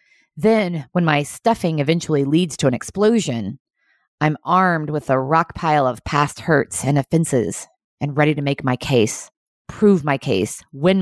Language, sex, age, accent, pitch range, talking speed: English, female, 30-49, American, 135-175 Hz, 165 wpm